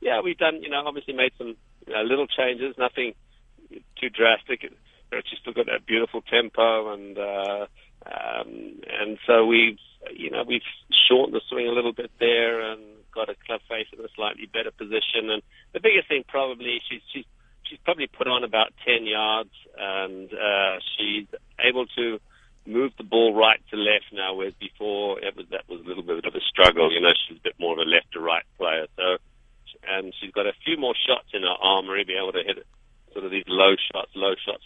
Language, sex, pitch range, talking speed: English, male, 95-135 Hz, 205 wpm